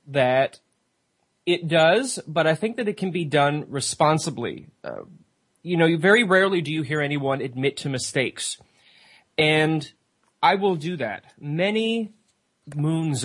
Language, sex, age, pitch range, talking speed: English, male, 30-49, 130-165 Hz, 140 wpm